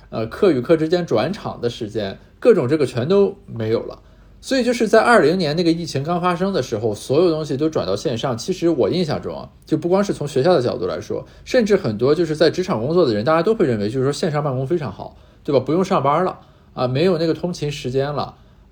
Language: Chinese